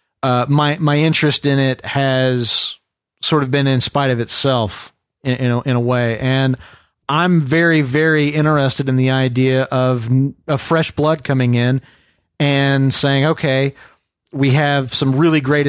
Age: 40-59